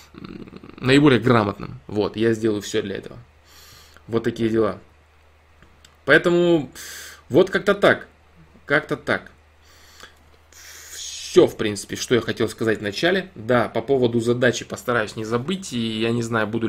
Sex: male